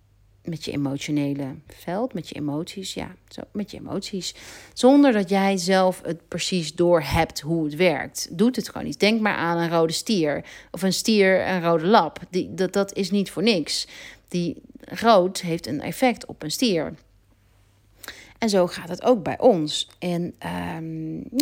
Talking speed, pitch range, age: 175 wpm, 155-195 Hz, 40-59